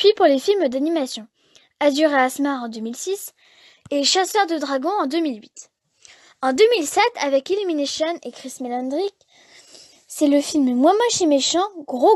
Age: 10-29